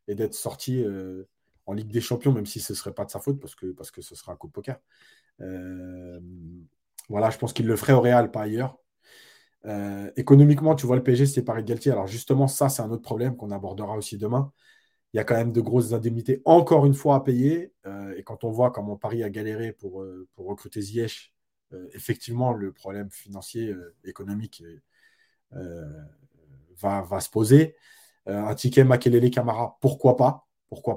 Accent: French